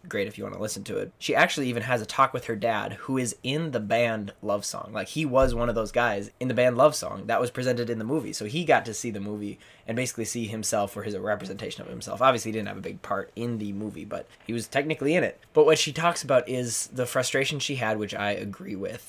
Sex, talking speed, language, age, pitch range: male, 275 wpm, English, 20-39, 110-130 Hz